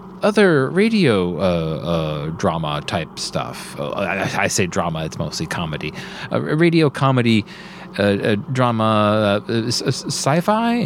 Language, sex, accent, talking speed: English, male, American, 135 wpm